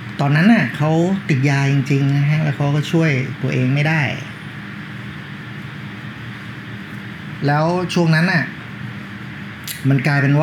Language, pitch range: Thai, 130-160 Hz